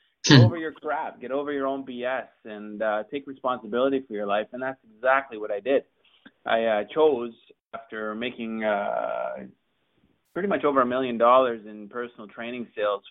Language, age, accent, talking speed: English, 20-39, American, 185 wpm